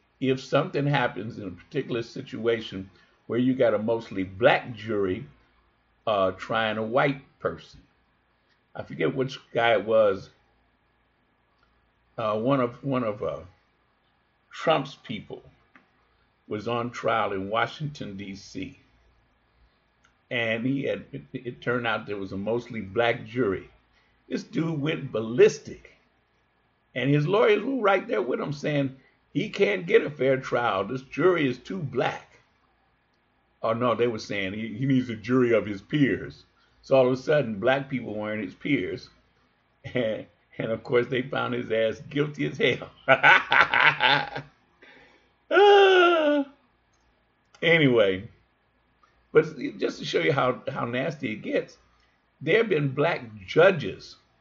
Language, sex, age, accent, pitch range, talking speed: English, male, 50-69, American, 115-145 Hz, 140 wpm